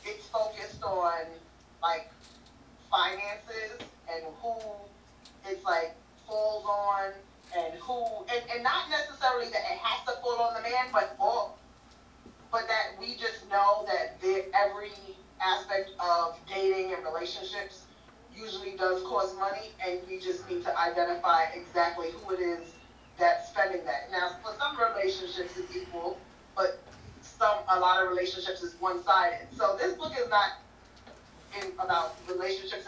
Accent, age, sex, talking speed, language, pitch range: American, 20-39, female, 140 wpm, English, 190-275 Hz